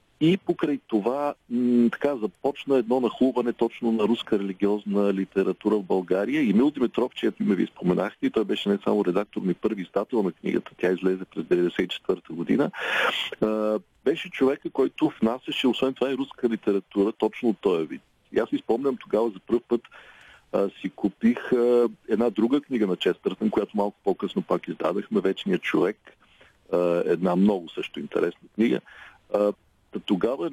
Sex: male